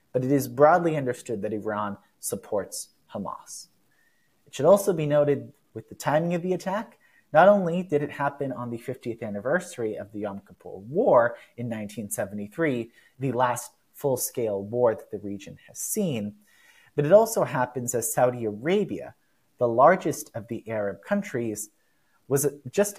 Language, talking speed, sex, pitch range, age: English, 155 wpm, male, 115-155 Hz, 30-49